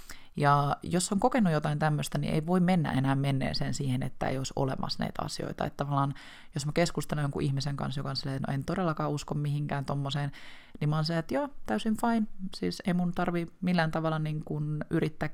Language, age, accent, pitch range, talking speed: Finnish, 20-39, native, 140-175 Hz, 200 wpm